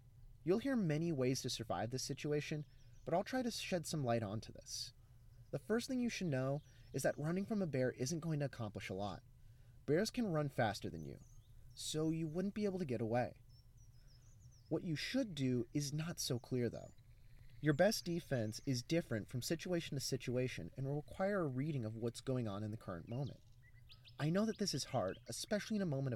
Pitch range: 120-160 Hz